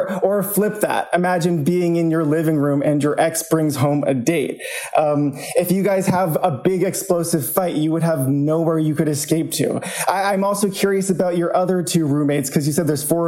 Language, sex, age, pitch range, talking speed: English, male, 20-39, 155-195 Hz, 215 wpm